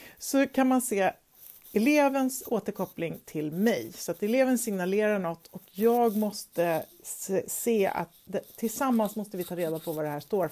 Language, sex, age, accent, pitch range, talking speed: Swedish, female, 40-59, native, 180-240 Hz, 165 wpm